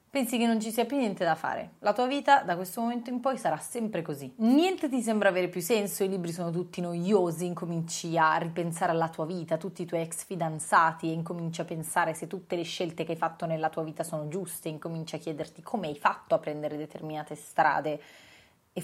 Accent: Italian